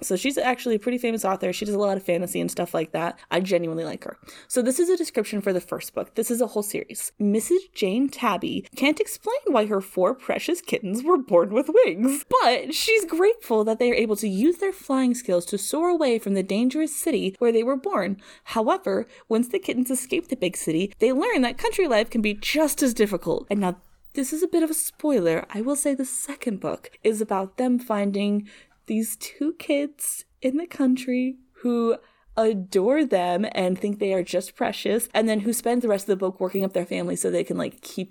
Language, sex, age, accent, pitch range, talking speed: English, female, 20-39, American, 205-310 Hz, 225 wpm